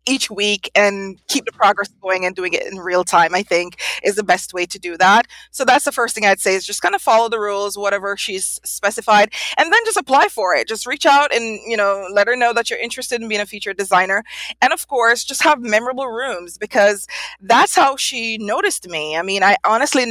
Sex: female